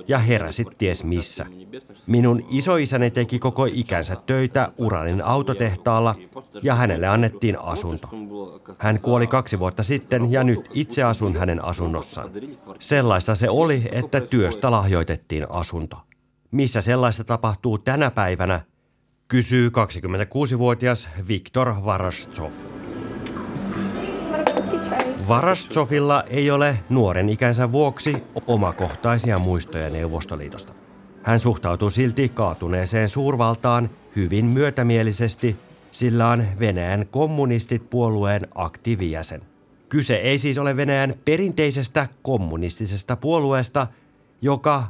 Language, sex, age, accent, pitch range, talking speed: Finnish, male, 30-49, native, 100-130 Hz, 100 wpm